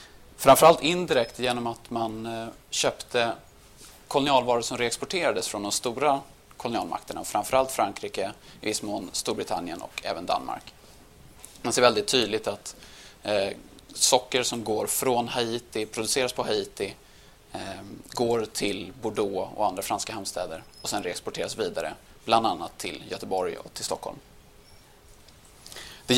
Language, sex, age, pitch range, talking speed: Swedish, male, 30-49, 110-130 Hz, 125 wpm